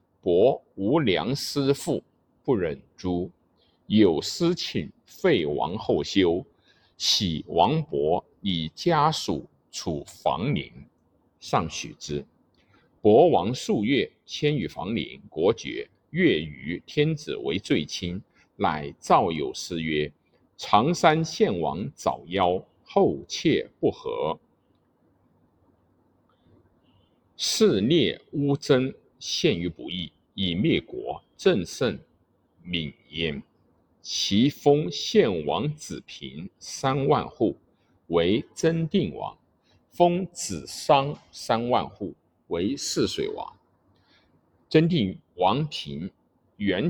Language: Chinese